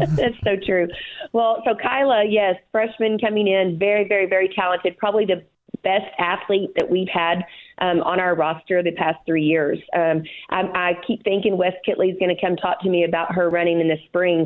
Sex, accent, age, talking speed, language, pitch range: female, American, 40-59, 200 wpm, English, 170-205 Hz